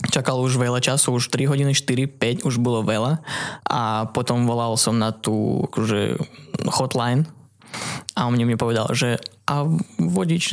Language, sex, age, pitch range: Slovak, male, 20-39, 120-140 Hz